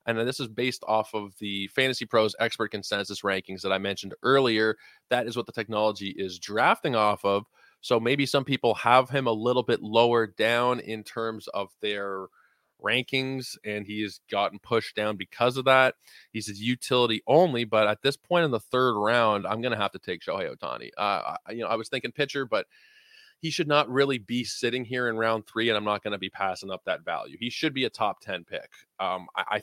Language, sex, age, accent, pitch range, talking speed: English, male, 20-39, American, 100-125 Hz, 215 wpm